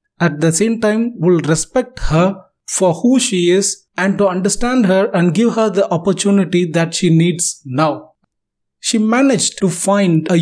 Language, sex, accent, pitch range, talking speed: English, male, Indian, 165-200 Hz, 165 wpm